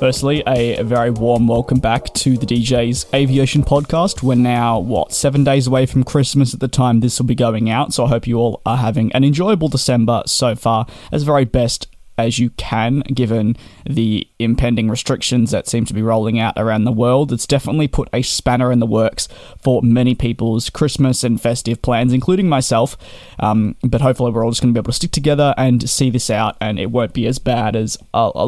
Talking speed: 215 wpm